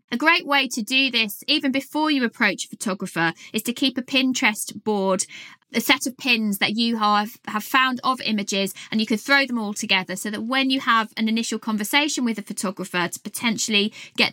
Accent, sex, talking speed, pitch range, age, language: British, female, 210 wpm, 200-235 Hz, 20-39, English